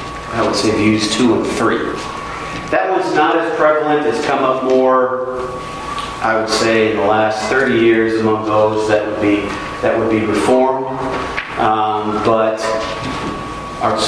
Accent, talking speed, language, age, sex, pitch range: American, 155 wpm, English, 40-59, male, 110-130 Hz